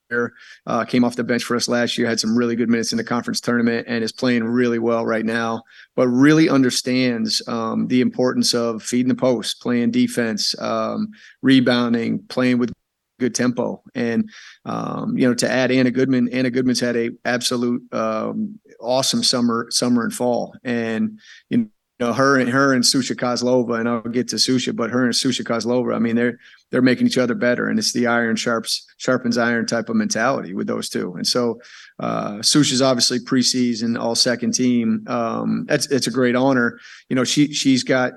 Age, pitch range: 30-49, 120-130 Hz